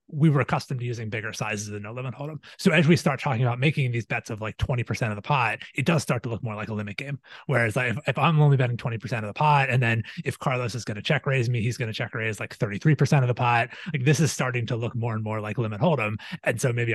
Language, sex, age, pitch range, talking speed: English, male, 30-49, 115-150 Hz, 290 wpm